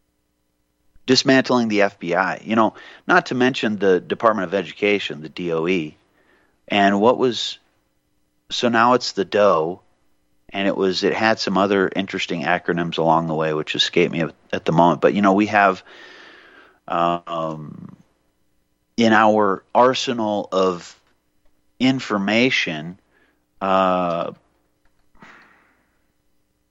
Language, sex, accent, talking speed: English, male, American, 115 wpm